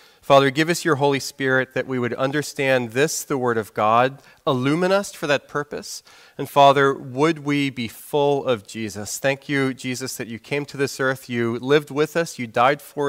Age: 40-59